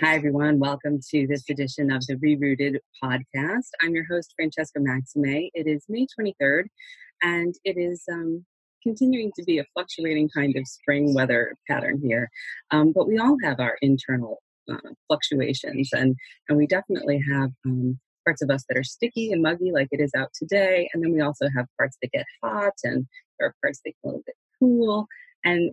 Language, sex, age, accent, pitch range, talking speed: English, female, 30-49, American, 135-170 Hz, 190 wpm